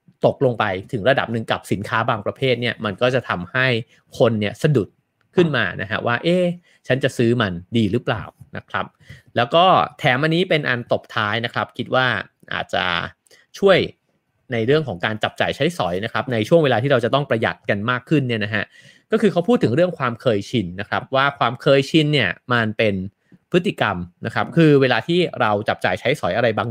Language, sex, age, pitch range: English, male, 30-49, 105-135 Hz